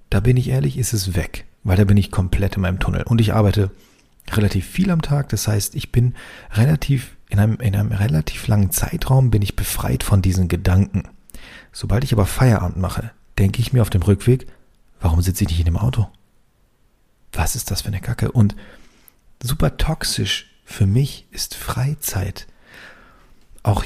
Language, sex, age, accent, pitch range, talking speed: German, male, 40-59, German, 100-130 Hz, 180 wpm